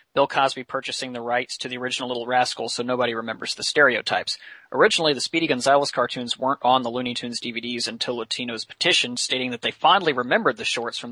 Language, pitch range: English, 120-140 Hz